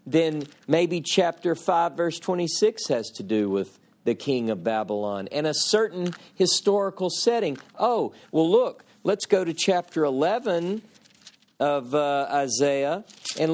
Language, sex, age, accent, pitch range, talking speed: English, male, 50-69, American, 165-205 Hz, 135 wpm